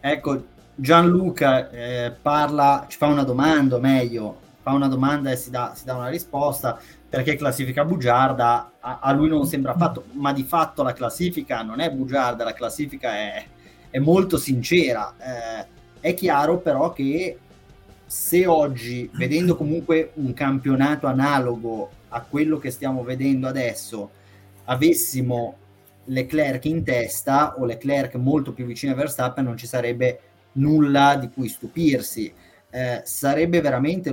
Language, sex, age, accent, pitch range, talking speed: Italian, male, 30-49, native, 120-145 Hz, 140 wpm